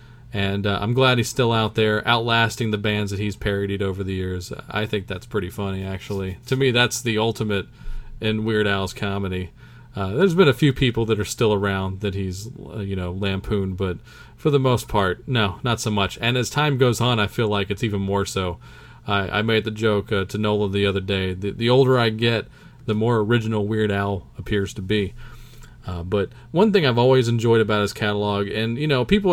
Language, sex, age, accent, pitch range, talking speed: English, male, 40-59, American, 100-120 Hz, 220 wpm